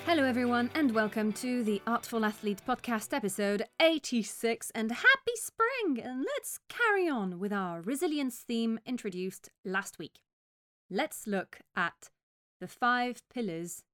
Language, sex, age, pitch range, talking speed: English, female, 30-49, 180-245 Hz, 135 wpm